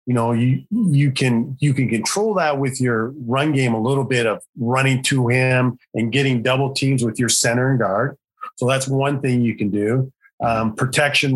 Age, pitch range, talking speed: 40-59, 115-140 Hz, 200 wpm